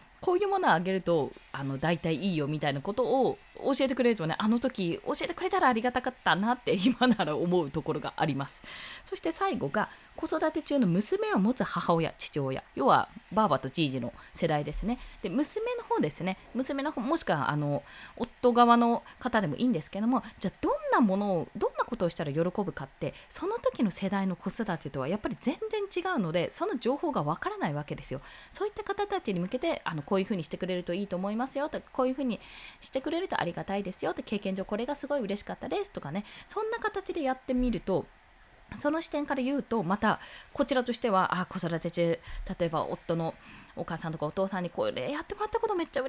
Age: 20-39